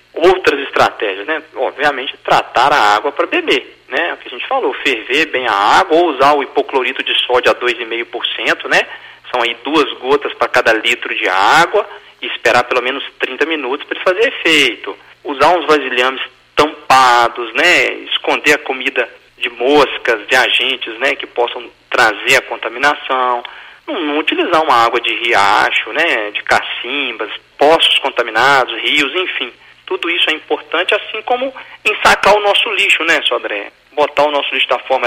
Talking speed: 165 wpm